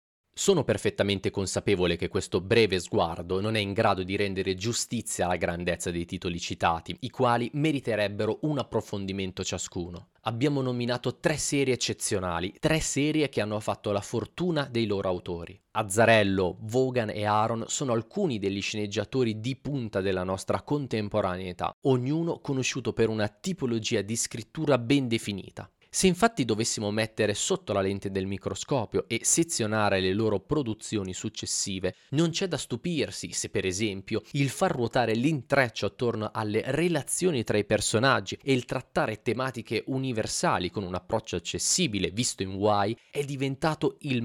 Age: 30-49